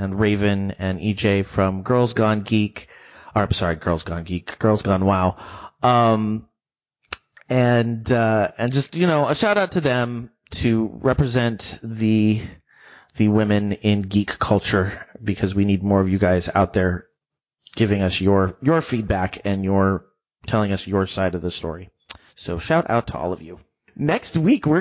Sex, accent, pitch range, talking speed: male, American, 105-135 Hz, 170 wpm